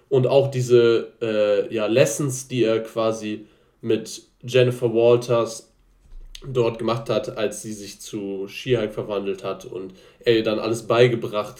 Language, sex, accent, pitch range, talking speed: German, male, German, 110-125 Hz, 145 wpm